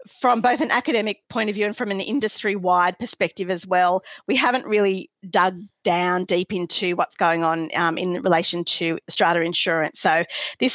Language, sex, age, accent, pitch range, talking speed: English, female, 40-59, Australian, 170-210 Hz, 180 wpm